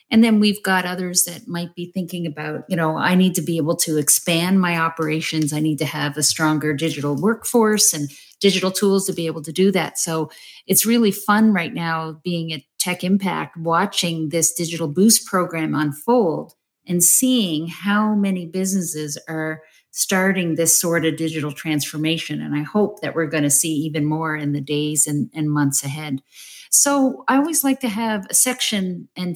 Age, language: 50-69, English